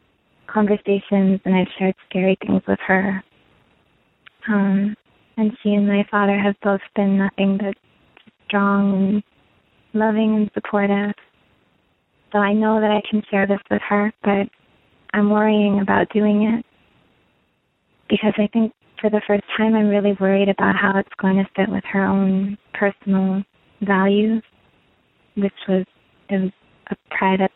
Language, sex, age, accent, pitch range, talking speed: English, female, 40-59, American, 190-210 Hz, 145 wpm